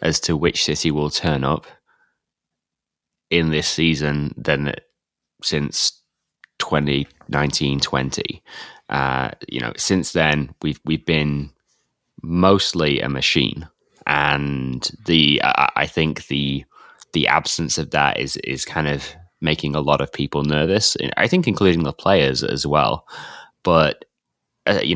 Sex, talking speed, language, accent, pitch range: male, 135 wpm, English, British, 70-80 Hz